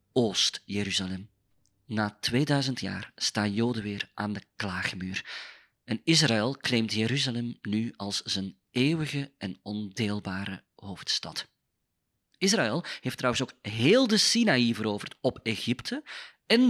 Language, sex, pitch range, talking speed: Dutch, male, 100-135 Hz, 115 wpm